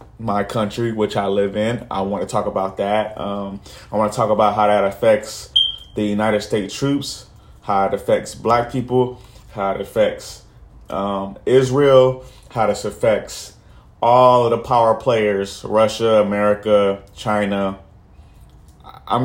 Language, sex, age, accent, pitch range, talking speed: English, male, 30-49, American, 100-120 Hz, 145 wpm